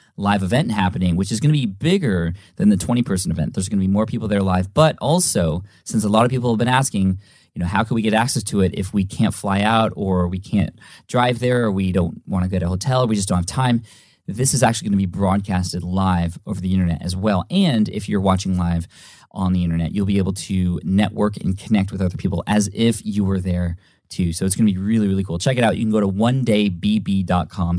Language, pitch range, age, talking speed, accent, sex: English, 95-115 Hz, 20-39, 260 wpm, American, male